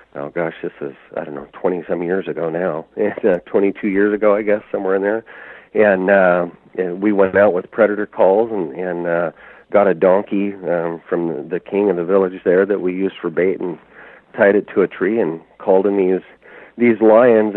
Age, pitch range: 50-69, 90-105 Hz